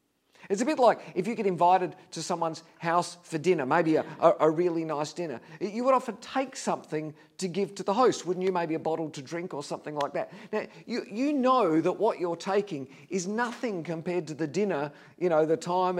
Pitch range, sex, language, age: 160-200 Hz, male, English, 50-69